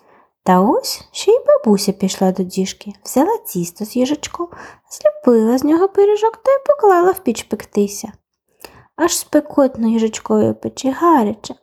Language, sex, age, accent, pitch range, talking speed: Ukrainian, female, 20-39, native, 205-340 Hz, 140 wpm